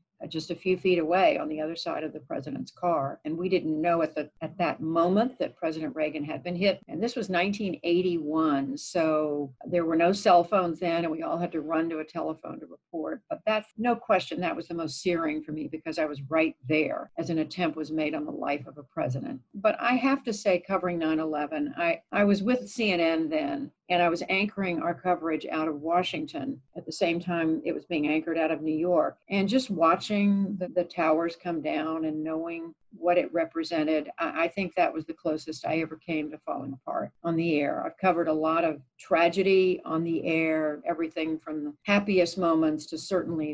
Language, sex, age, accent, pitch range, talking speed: English, female, 60-79, American, 155-185 Hz, 215 wpm